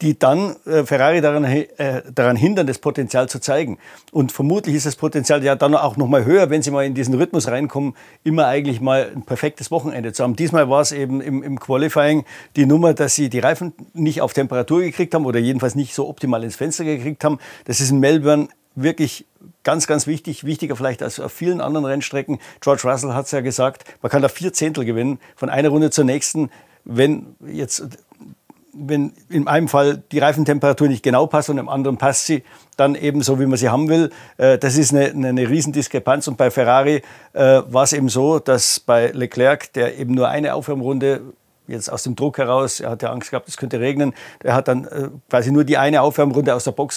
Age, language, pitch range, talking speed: 50-69, German, 130-150 Hz, 205 wpm